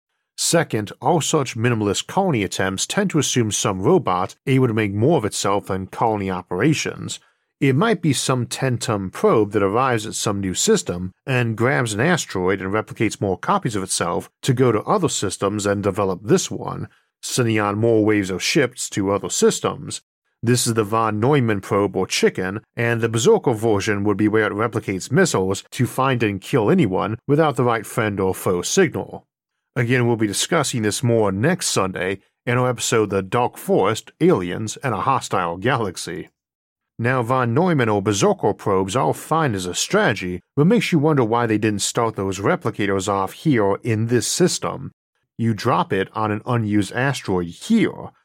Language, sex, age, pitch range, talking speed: English, male, 40-59, 100-130 Hz, 180 wpm